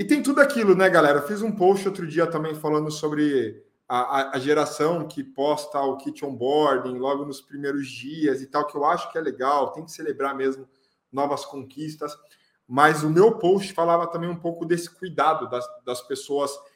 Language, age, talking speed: Portuguese, 20-39, 190 wpm